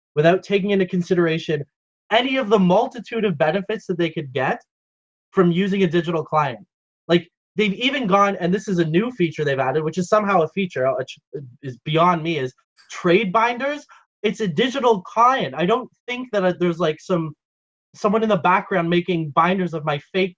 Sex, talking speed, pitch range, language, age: male, 185 wpm, 155-195 Hz, English, 20-39